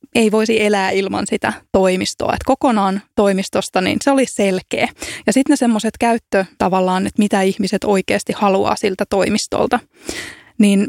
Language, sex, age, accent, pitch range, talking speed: Finnish, female, 20-39, native, 195-235 Hz, 130 wpm